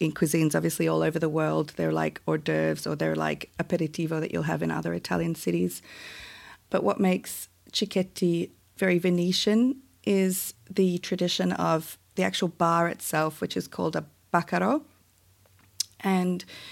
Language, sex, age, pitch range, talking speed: English, female, 40-59, 160-190 Hz, 150 wpm